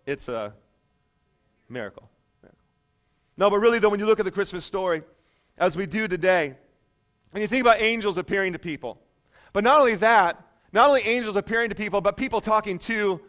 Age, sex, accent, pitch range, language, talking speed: 40-59, male, American, 165-220 Hz, English, 185 wpm